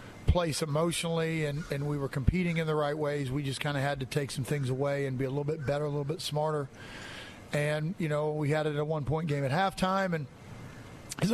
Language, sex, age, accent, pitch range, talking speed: English, male, 40-59, American, 145-160 Hz, 245 wpm